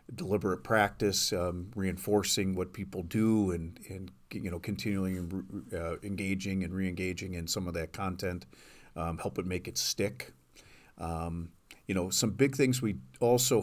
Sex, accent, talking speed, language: male, American, 160 wpm, English